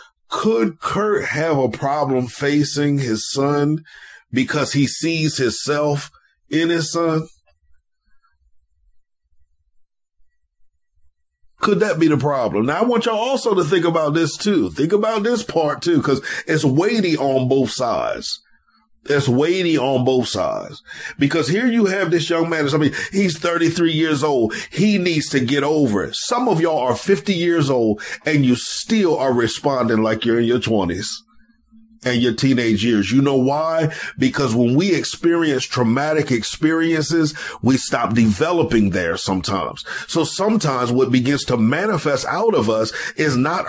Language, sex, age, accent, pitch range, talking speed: English, male, 40-59, American, 125-165 Hz, 155 wpm